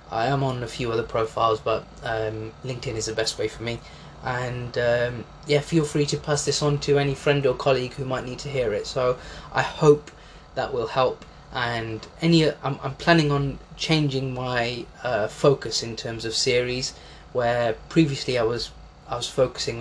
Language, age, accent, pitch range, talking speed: English, 20-39, British, 110-140 Hz, 190 wpm